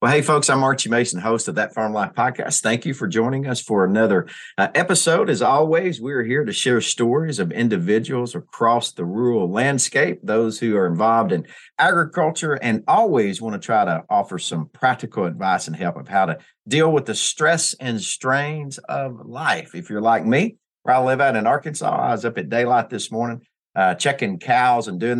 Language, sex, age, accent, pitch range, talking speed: English, male, 50-69, American, 110-145 Hz, 200 wpm